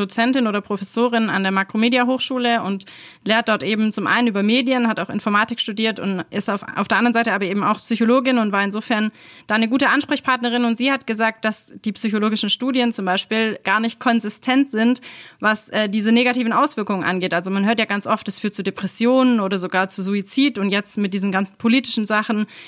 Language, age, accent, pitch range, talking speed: German, 30-49, German, 200-235 Hz, 205 wpm